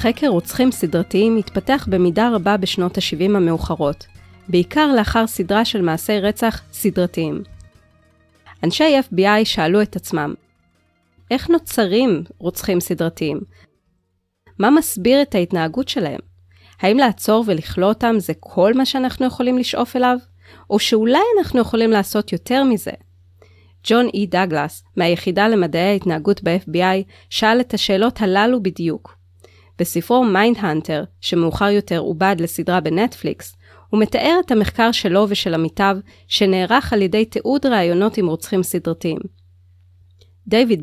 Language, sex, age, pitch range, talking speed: Hebrew, female, 30-49, 155-225 Hz, 120 wpm